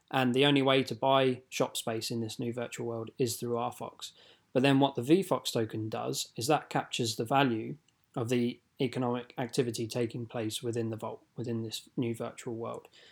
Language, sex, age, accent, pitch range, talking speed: English, male, 20-39, British, 115-130 Hz, 190 wpm